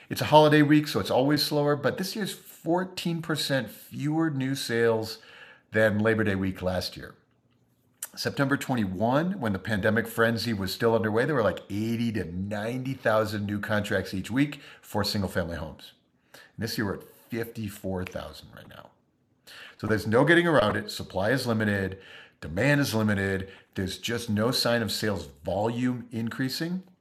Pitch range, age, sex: 100-135 Hz, 50-69, male